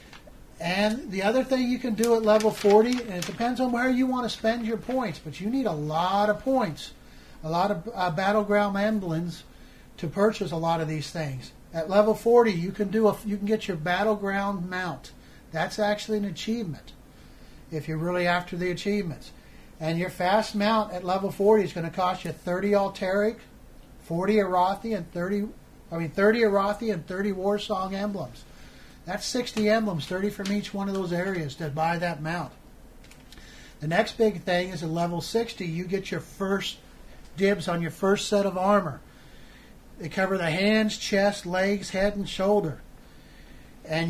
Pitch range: 175-210 Hz